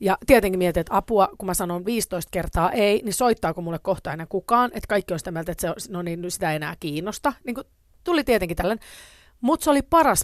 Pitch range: 175-245 Hz